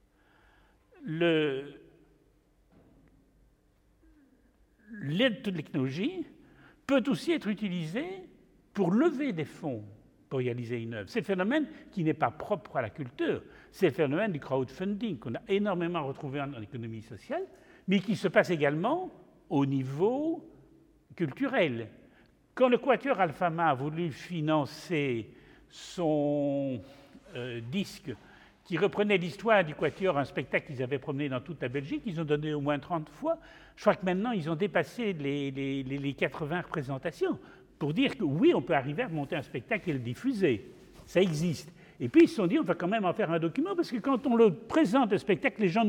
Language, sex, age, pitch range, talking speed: French, male, 60-79, 140-225 Hz, 170 wpm